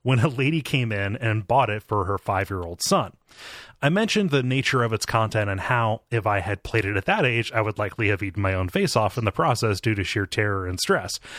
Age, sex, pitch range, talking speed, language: 30-49, male, 105-145 Hz, 250 wpm, English